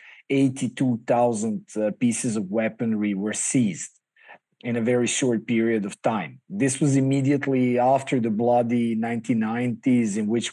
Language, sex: English, male